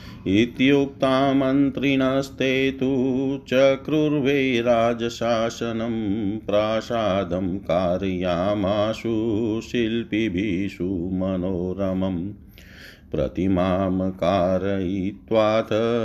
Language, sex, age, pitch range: Hindi, male, 50-69, 95-115 Hz